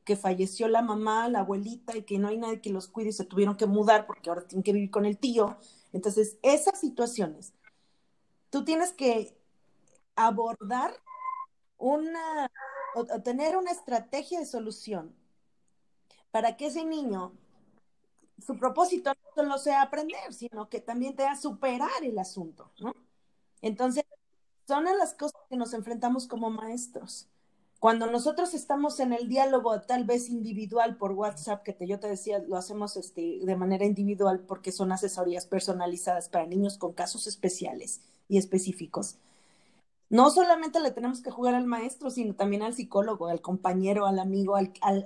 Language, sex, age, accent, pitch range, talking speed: Spanish, female, 30-49, Mexican, 195-250 Hz, 160 wpm